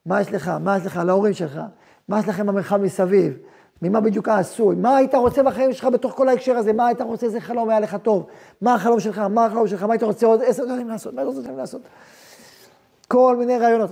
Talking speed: 230 wpm